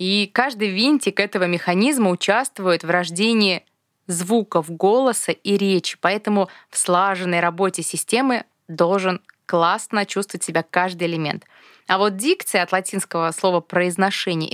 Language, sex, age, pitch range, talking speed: Russian, female, 20-39, 180-225 Hz, 125 wpm